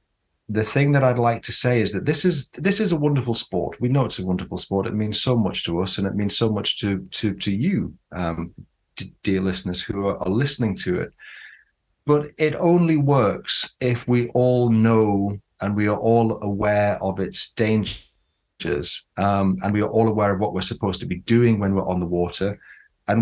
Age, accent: 30-49, British